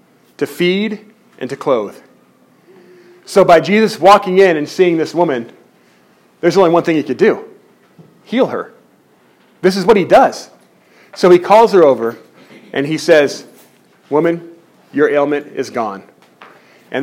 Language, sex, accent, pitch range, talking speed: English, male, American, 130-190 Hz, 150 wpm